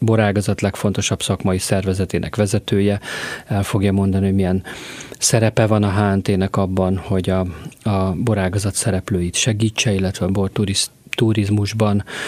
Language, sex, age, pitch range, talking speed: Hungarian, male, 40-59, 100-115 Hz, 120 wpm